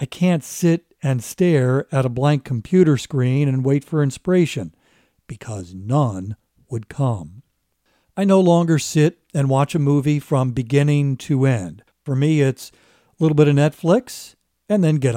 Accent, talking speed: American, 160 wpm